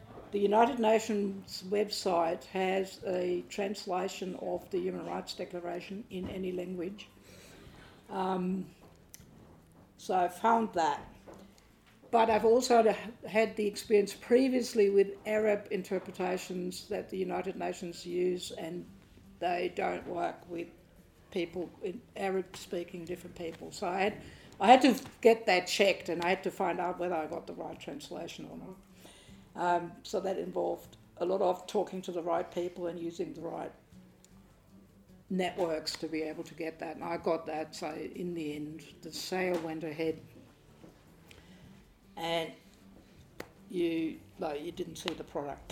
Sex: female